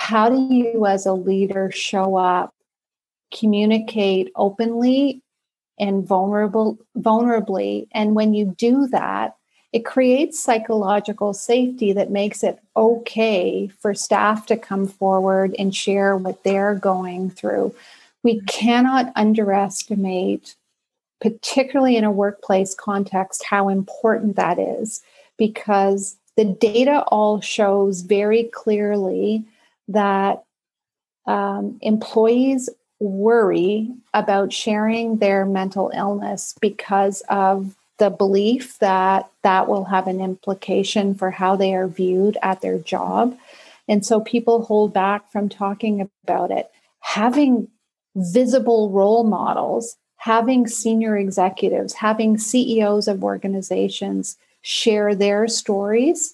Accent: American